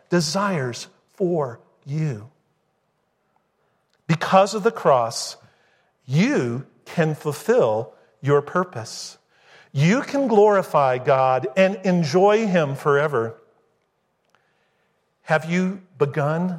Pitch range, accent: 145-190 Hz, American